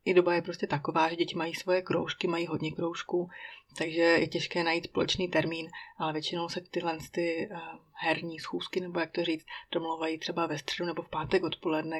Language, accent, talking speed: Czech, native, 190 wpm